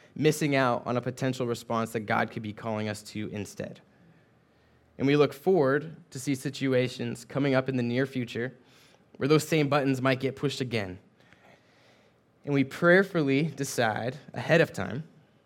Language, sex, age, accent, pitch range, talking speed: English, male, 20-39, American, 120-145 Hz, 165 wpm